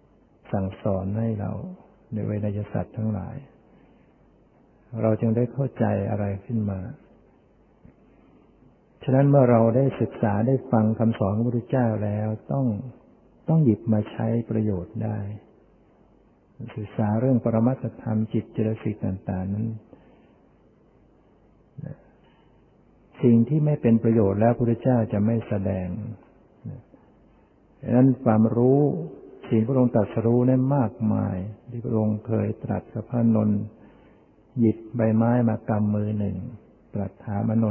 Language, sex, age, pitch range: Thai, male, 60-79, 105-120 Hz